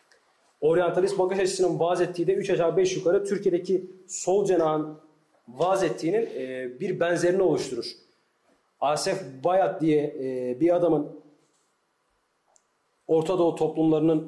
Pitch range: 155-205 Hz